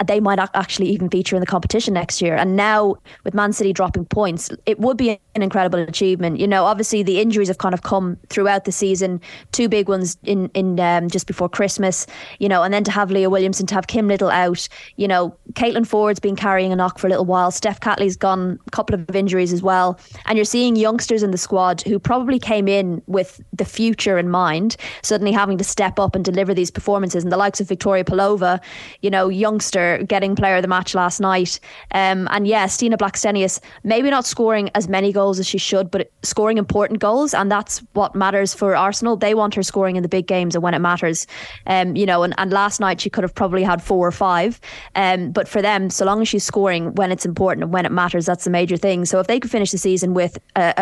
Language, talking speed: English, 235 wpm